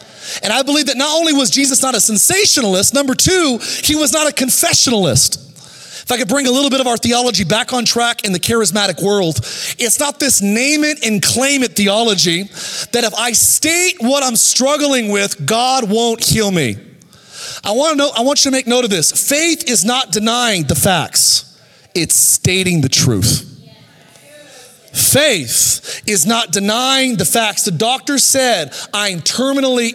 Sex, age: male, 30-49